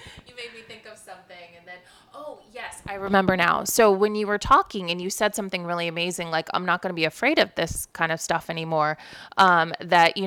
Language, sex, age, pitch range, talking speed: English, female, 20-39, 175-210 Hz, 230 wpm